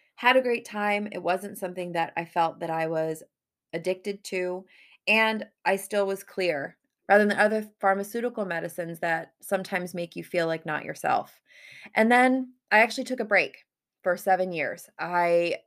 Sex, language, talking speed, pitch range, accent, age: female, English, 170 wpm, 170-215 Hz, American, 20-39